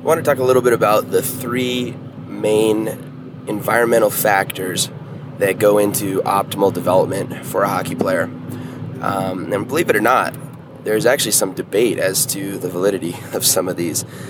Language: English